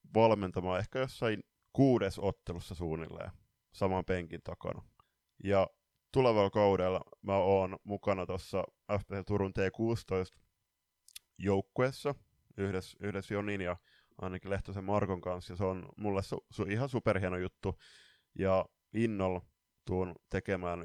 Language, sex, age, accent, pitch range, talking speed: Finnish, male, 20-39, native, 90-105 Hz, 120 wpm